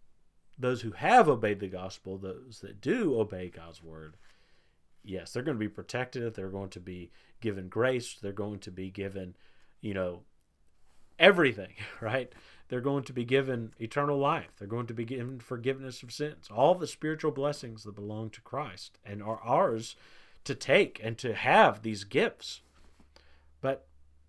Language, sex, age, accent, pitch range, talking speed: English, male, 40-59, American, 90-125 Hz, 165 wpm